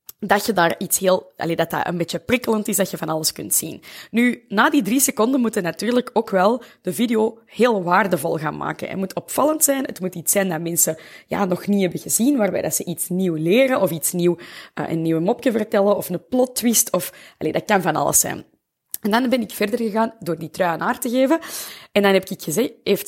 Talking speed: 235 wpm